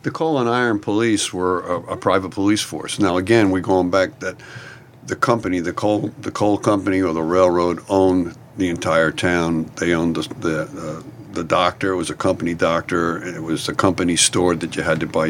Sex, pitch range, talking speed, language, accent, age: male, 85-105 Hz, 210 wpm, English, American, 60-79